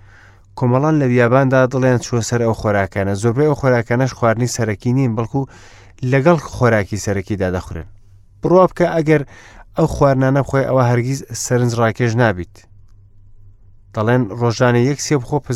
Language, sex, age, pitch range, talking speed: English, male, 30-49, 100-135 Hz, 160 wpm